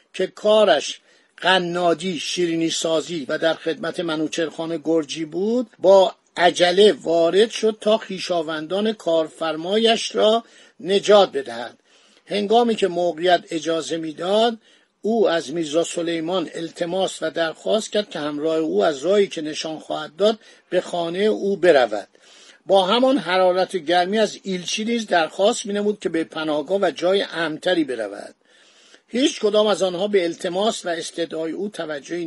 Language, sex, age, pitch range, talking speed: Persian, male, 50-69, 165-210 Hz, 140 wpm